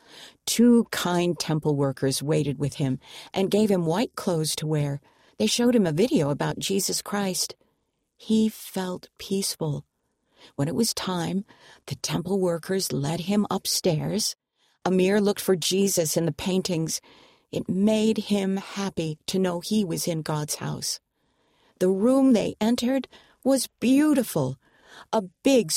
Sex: female